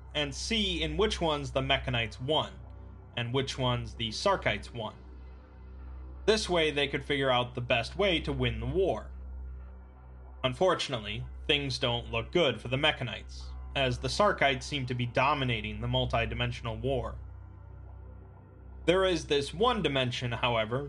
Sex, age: male, 20-39